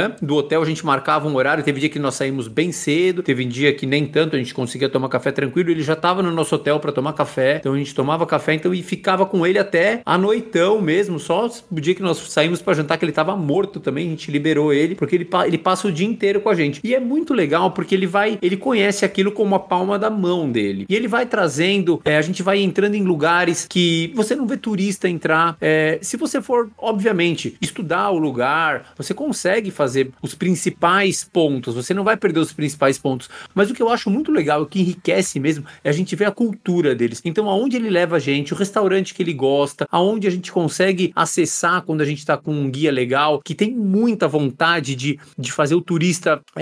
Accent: Brazilian